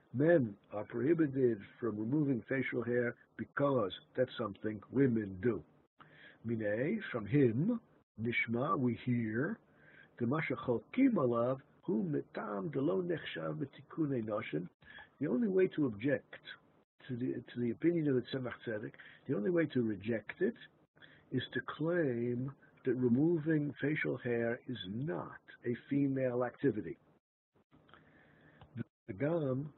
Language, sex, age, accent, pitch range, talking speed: English, male, 60-79, American, 115-150 Hz, 105 wpm